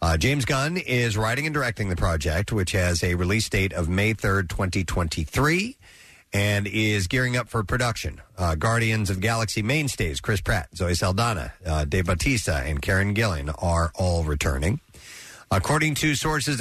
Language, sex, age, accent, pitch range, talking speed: English, male, 50-69, American, 100-130 Hz, 165 wpm